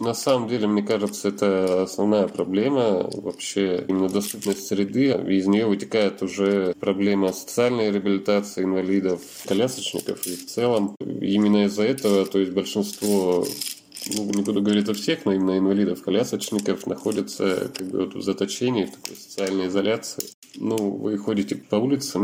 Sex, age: male, 20-39